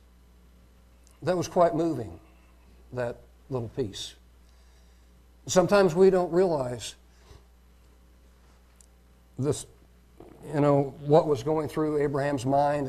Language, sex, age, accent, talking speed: English, male, 60-79, American, 95 wpm